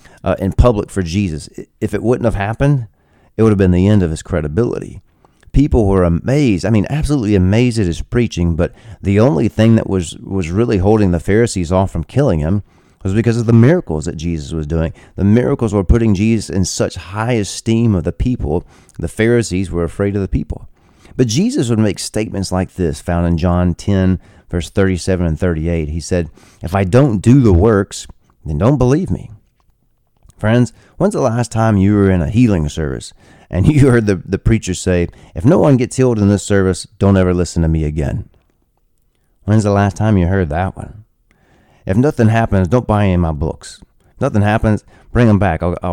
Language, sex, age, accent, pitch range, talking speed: English, male, 30-49, American, 90-115 Hz, 205 wpm